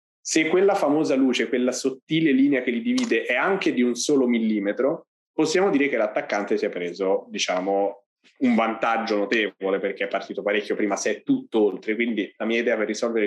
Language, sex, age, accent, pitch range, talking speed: Italian, male, 20-39, native, 110-150 Hz, 190 wpm